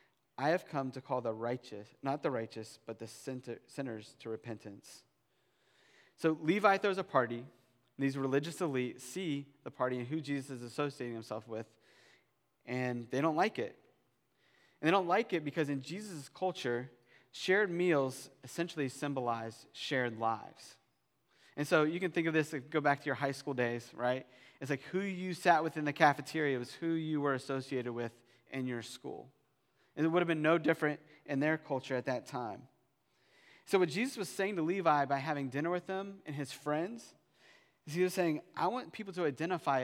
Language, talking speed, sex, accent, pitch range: English, 185 wpm, male, American, 125-160 Hz